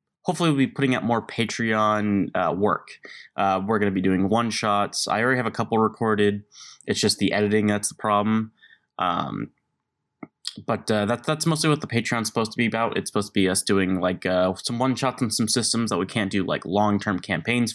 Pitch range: 95-120 Hz